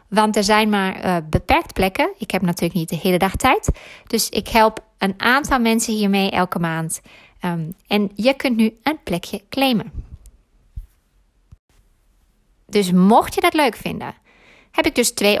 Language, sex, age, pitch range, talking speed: Dutch, female, 20-39, 185-235 Hz, 160 wpm